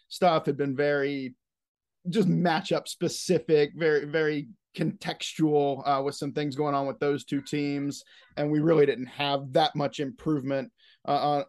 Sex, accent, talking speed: male, American, 155 wpm